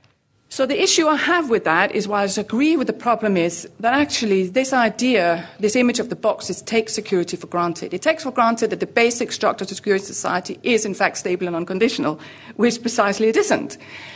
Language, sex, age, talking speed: English, female, 40-59, 210 wpm